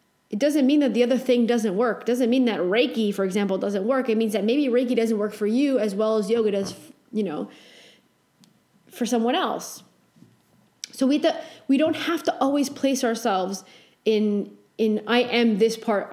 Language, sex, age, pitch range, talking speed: English, female, 30-49, 210-255 Hz, 195 wpm